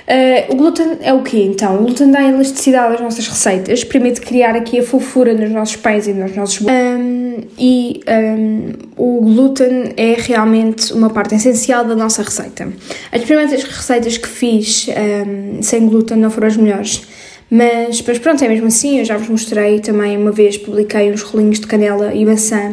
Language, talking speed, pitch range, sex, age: Portuguese, 175 wpm, 215-250 Hz, female, 10-29